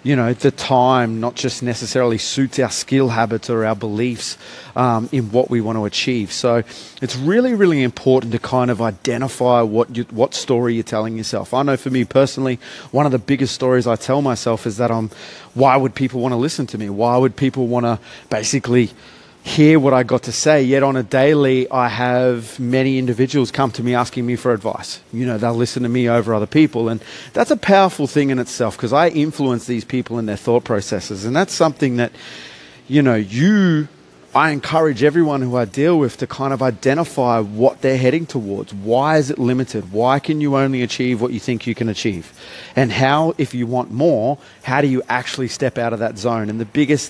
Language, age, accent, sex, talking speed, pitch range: English, 30-49, Australian, male, 215 wpm, 115-135 Hz